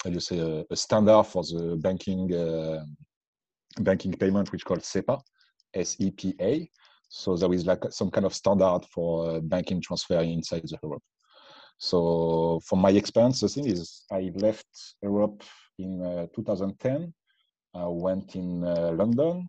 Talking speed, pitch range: 165 wpm, 85-100 Hz